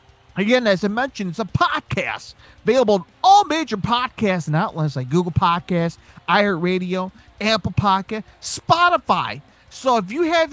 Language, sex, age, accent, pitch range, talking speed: English, male, 40-59, American, 150-220 Hz, 140 wpm